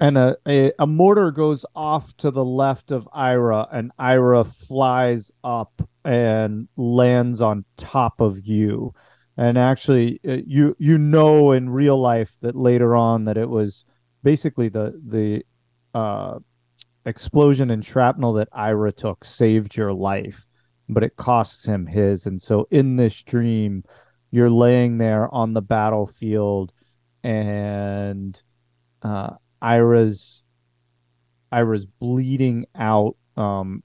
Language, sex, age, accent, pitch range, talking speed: English, male, 30-49, American, 100-125 Hz, 125 wpm